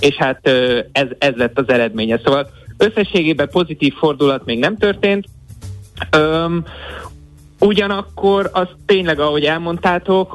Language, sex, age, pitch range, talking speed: Hungarian, male, 30-49, 125-160 Hz, 110 wpm